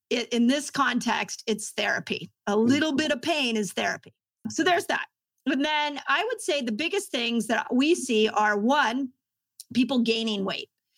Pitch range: 215-255 Hz